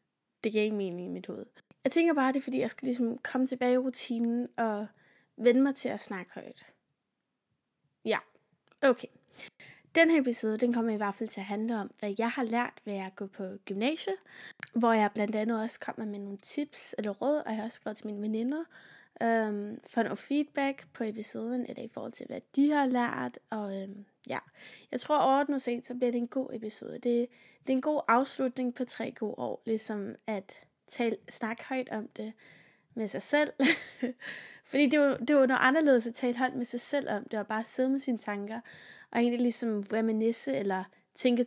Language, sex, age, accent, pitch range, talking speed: Danish, female, 20-39, native, 215-260 Hz, 215 wpm